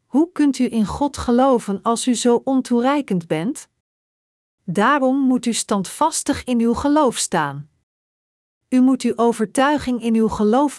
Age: 50-69